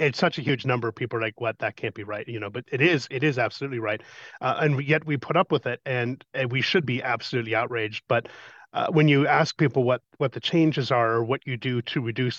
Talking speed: 265 wpm